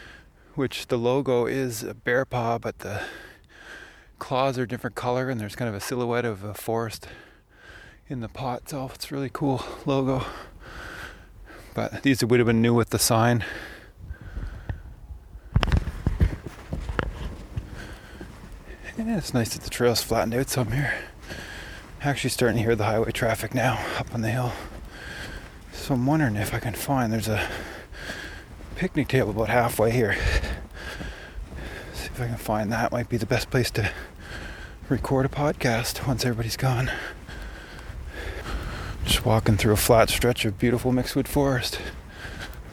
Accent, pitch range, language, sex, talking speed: American, 110-130 Hz, English, male, 150 wpm